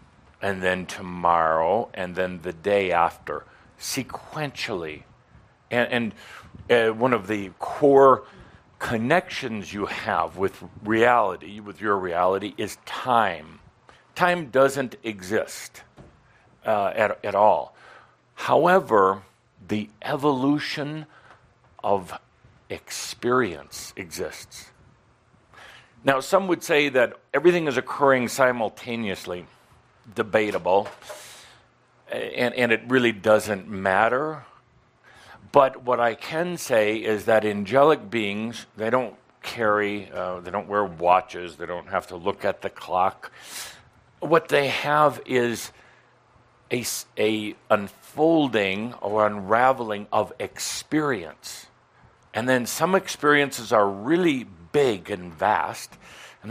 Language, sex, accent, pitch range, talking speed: English, male, American, 100-130 Hz, 105 wpm